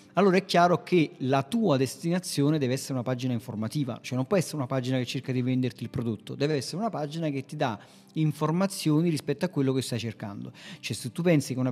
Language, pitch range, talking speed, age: Italian, 130-155 Hz, 225 wpm, 40-59